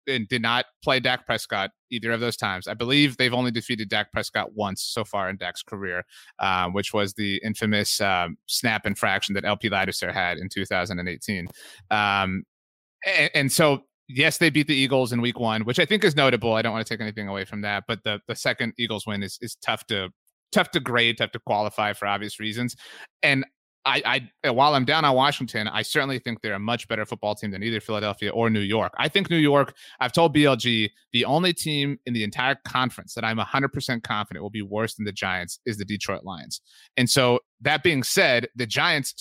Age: 30-49